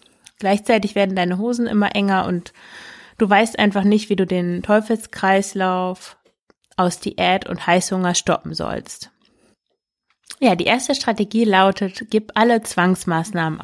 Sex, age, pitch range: female, 20-39, 195-235 Hz